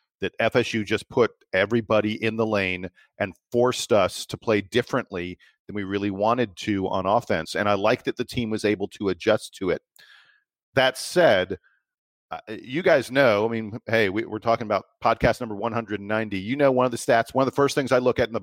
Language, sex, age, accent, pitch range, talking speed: English, male, 40-59, American, 105-125 Hz, 210 wpm